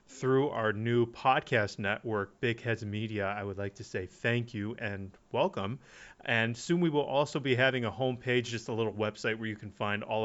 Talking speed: 210 wpm